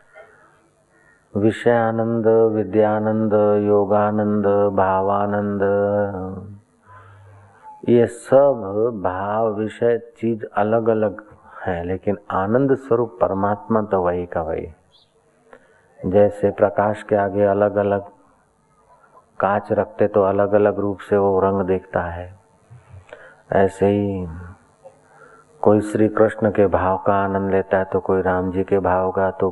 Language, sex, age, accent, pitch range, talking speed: Hindi, male, 30-49, native, 95-110 Hz, 110 wpm